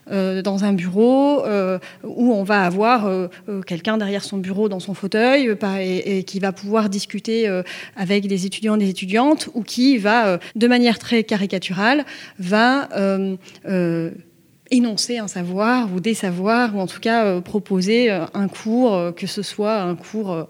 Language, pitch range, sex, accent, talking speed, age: French, 195-240 Hz, female, French, 180 wpm, 30-49